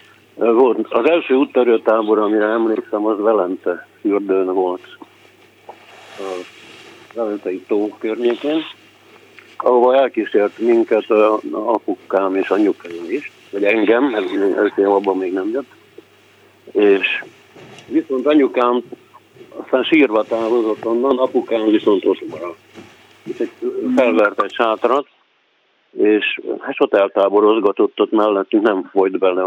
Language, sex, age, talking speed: Hungarian, male, 50-69, 100 wpm